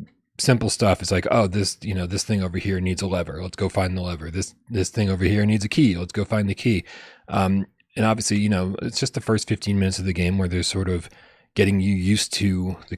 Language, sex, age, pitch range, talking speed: English, male, 30-49, 90-110 Hz, 260 wpm